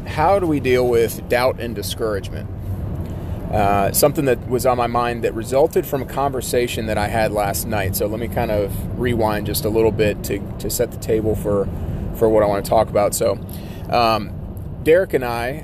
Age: 30-49